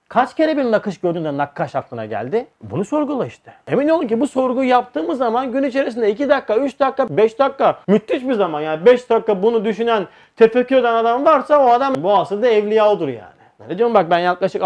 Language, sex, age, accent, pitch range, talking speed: Turkish, male, 40-59, native, 155-215 Hz, 205 wpm